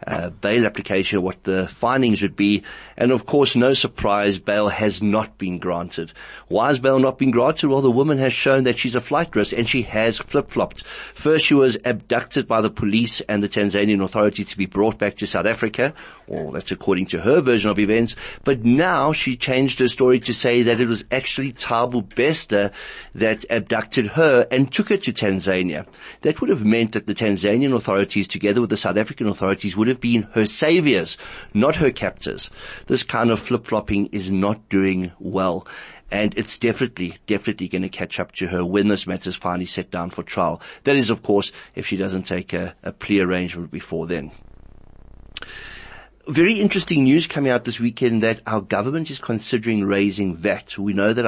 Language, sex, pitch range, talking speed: English, male, 100-125 Hz, 195 wpm